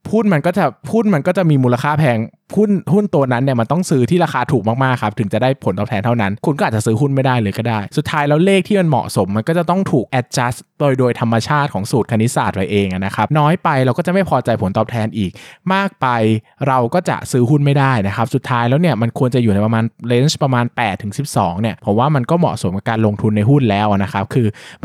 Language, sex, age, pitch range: Thai, male, 20-39, 115-170 Hz